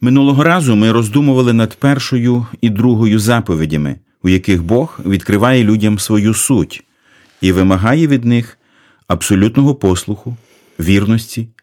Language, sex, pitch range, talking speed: Ukrainian, male, 95-125 Hz, 120 wpm